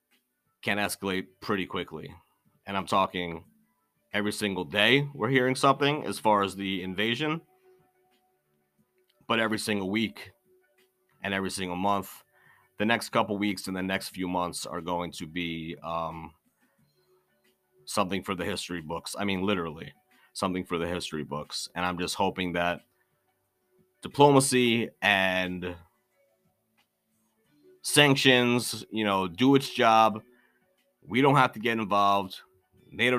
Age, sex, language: 30-49, male, English